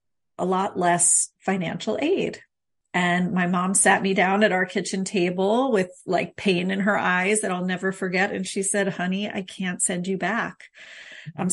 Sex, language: female, English